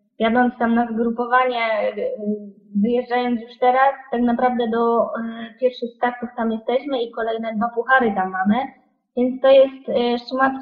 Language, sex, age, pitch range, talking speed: Polish, female, 20-39, 210-245 Hz, 135 wpm